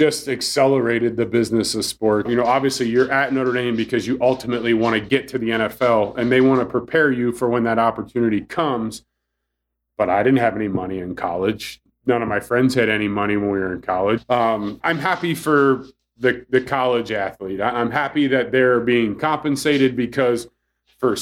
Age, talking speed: 30-49, 195 wpm